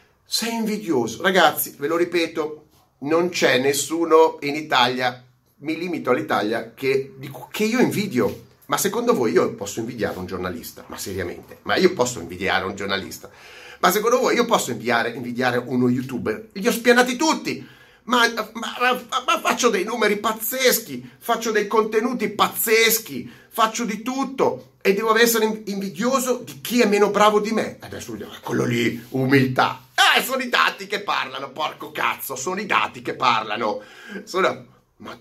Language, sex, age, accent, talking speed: Italian, male, 40-59, native, 155 wpm